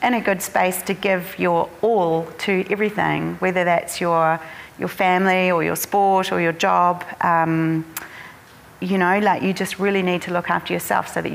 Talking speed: 185 wpm